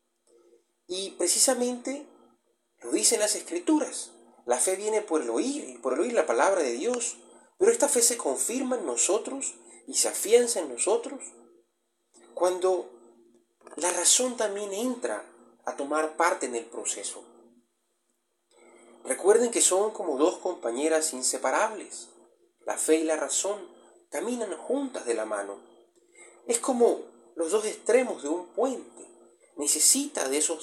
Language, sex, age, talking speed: Spanish, male, 30-49, 140 wpm